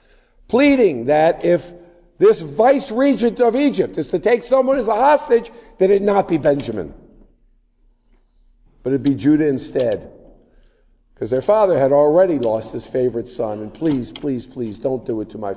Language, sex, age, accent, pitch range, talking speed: English, male, 50-69, American, 135-215 Hz, 170 wpm